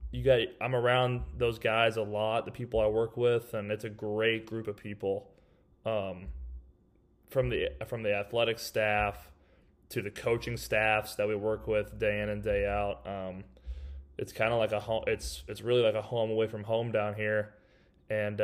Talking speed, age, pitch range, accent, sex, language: 190 wpm, 20-39, 105-115 Hz, American, male, English